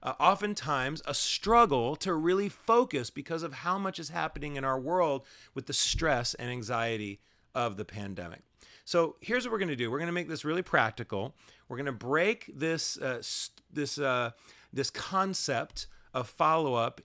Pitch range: 125-175 Hz